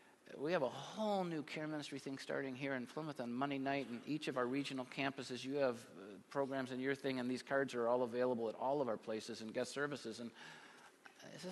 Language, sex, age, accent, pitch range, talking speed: English, male, 50-69, American, 125-160 Hz, 225 wpm